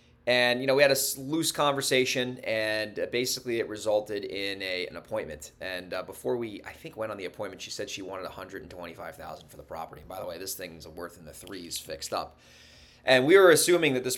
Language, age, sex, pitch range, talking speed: English, 20-39, male, 105-135 Hz, 225 wpm